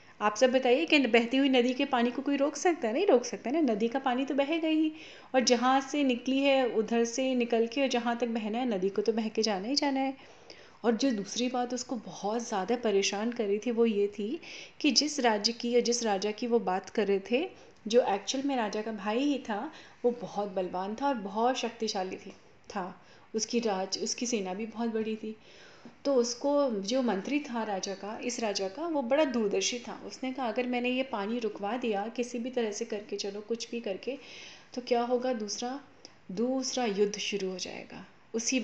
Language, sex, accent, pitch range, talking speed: Hindi, female, native, 215-255 Hz, 220 wpm